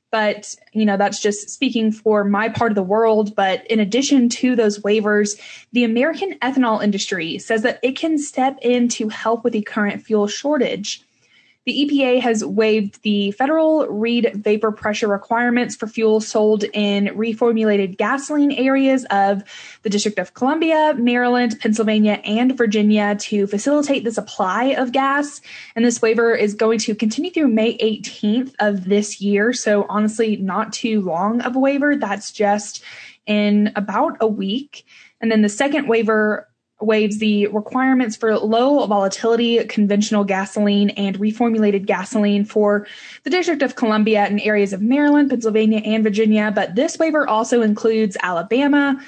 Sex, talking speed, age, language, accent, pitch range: female, 155 wpm, 10-29, English, American, 210-245 Hz